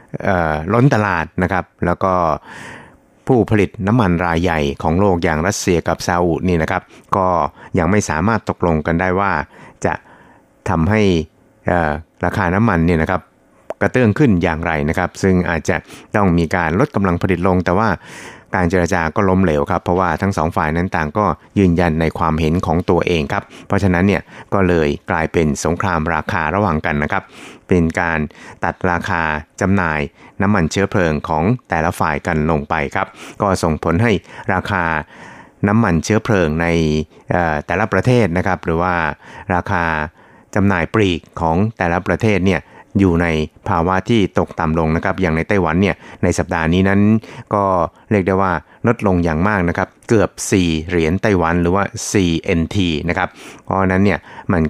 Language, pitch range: Thai, 80-100 Hz